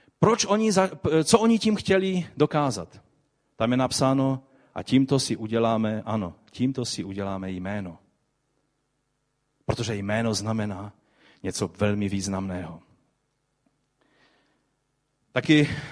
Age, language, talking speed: 40-59, Czech, 100 wpm